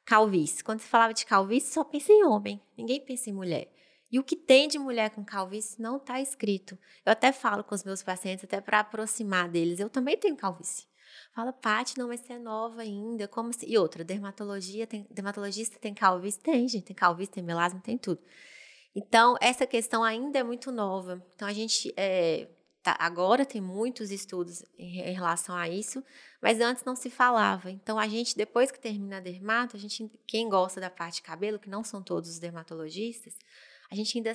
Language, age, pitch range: Portuguese, 20-39, 185-235 Hz